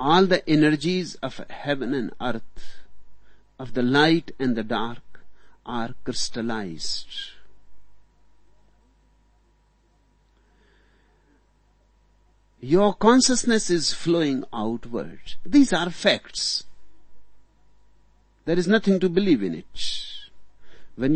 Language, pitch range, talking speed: Hindi, 130-190 Hz, 90 wpm